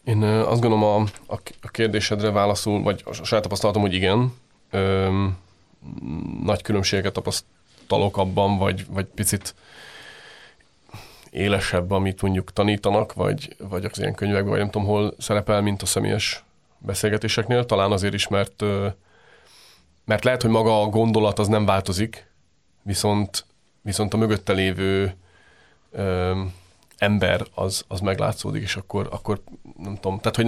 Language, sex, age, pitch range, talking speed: Hungarian, male, 30-49, 95-105 Hz, 140 wpm